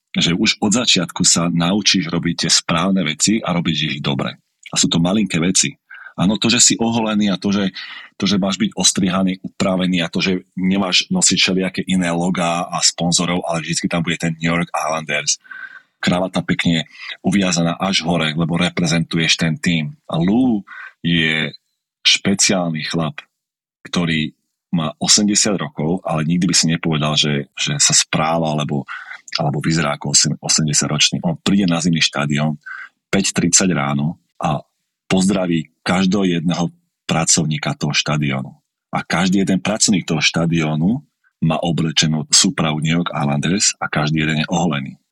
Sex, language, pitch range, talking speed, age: male, Slovak, 80-95 Hz, 155 wpm, 40-59